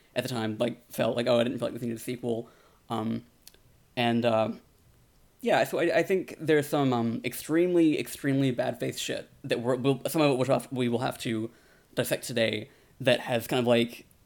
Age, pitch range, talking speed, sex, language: 20-39, 120-145 Hz, 200 wpm, male, English